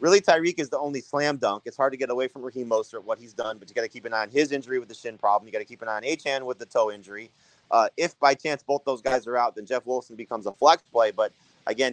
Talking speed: 310 wpm